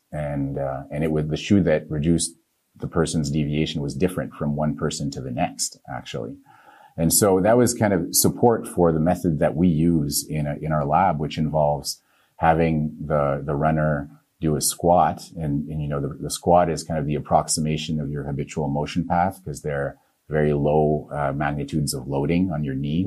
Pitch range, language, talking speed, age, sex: 75-85 Hz, English, 200 wpm, 30-49, male